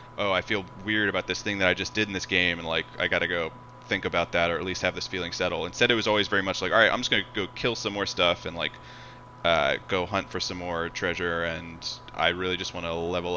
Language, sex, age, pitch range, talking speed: English, male, 20-39, 90-115 Hz, 280 wpm